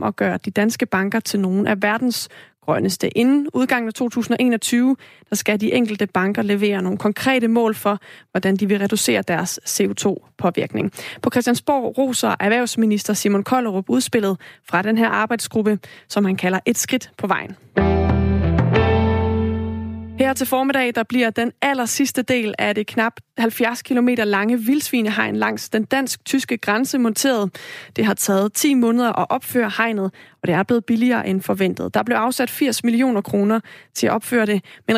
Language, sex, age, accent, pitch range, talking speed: Danish, female, 30-49, native, 205-245 Hz, 165 wpm